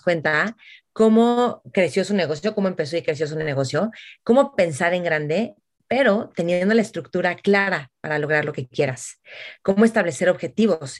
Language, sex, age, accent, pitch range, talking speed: Spanish, female, 30-49, Mexican, 160-200 Hz, 155 wpm